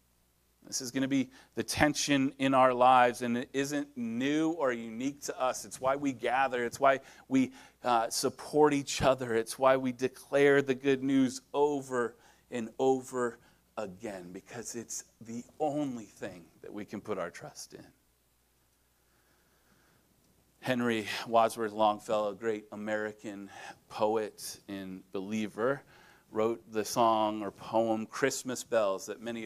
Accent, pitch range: American, 105-130 Hz